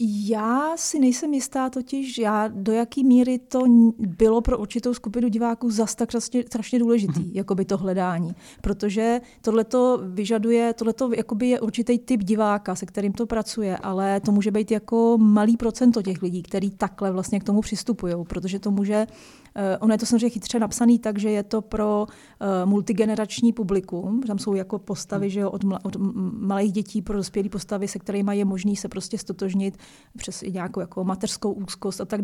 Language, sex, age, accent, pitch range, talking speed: Czech, female, 30-49, native, 200-235 Hz, 175 wpm